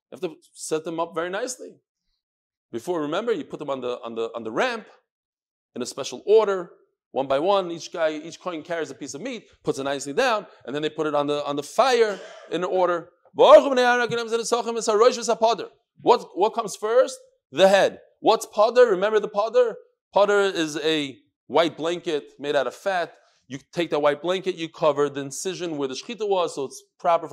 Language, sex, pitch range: English, male, 150-220 Hz